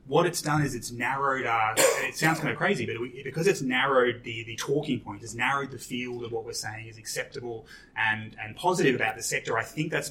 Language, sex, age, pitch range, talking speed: English, male, 20-39, 110-135 Hz, 245 wpm